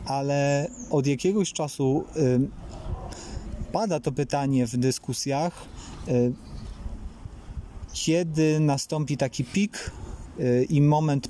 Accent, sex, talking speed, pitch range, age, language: native, male, 80 wpm, 130-165 Hz, 30-49, Polish